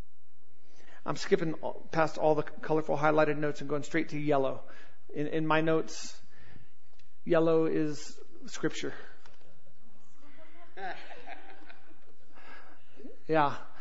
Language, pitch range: English, 155-185 Hz